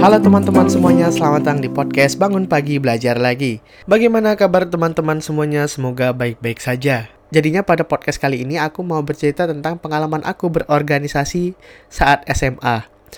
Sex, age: male, 20-39